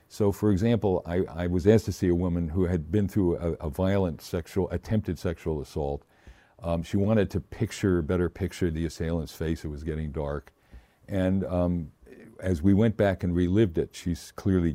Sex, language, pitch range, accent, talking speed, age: male, English, 80-95 Hz, American, 190 wpm, 50-69